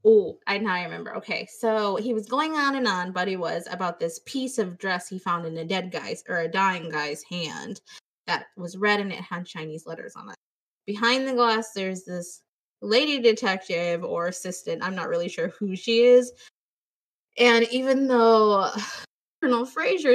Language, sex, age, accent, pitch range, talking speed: English, female, 20-39, American, 180-240 Hz, 190 wpm